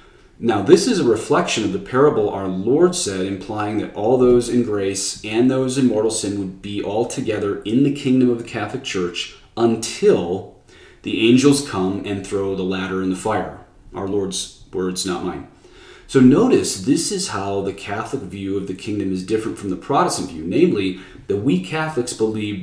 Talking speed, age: 190 wpm, 30-49